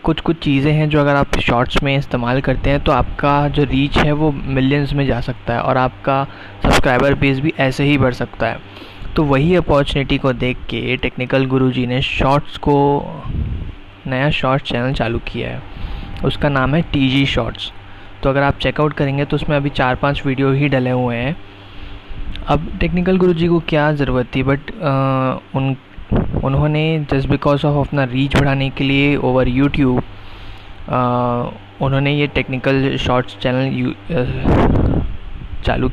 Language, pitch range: Hindi, 120-140 Hz